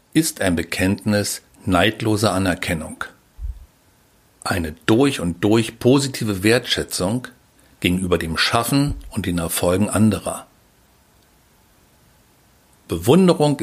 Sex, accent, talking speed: male, German, 85 wpm